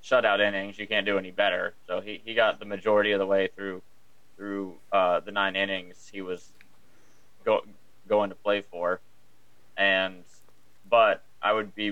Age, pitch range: 20-39, 95-110 Hz